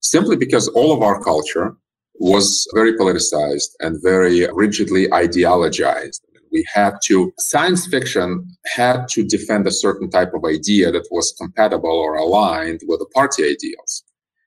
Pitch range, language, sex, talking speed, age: 90-135 Hz, English, male, 145 wpm, 40-59